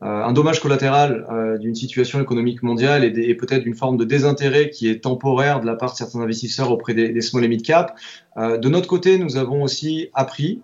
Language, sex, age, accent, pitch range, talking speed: French, male, 20-39, French, 120-140 Hz, 225 wpm